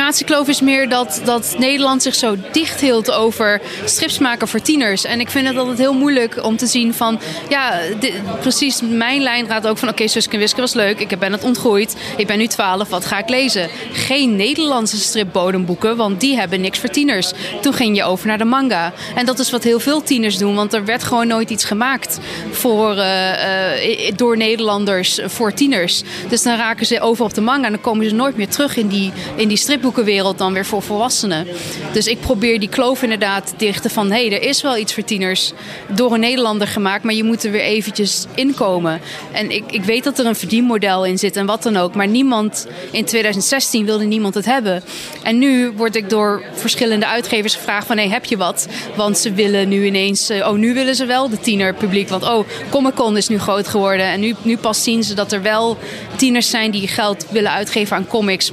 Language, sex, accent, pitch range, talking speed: Dutch, female, Dutch, 200-245 Hz, 225 wpm